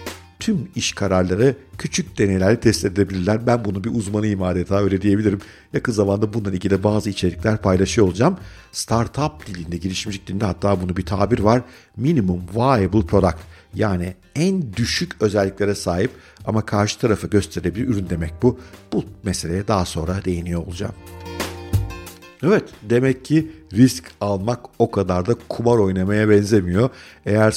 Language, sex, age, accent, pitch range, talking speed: Turkish, male, 50-69, native, 95-120 Hz, 145 wpm